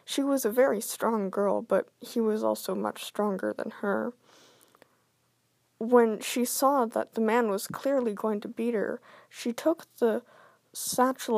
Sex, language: female, English